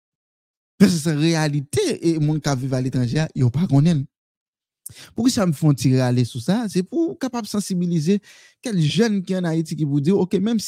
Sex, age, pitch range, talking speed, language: male, 50-69, 155-210 Hz, 190 wpm, French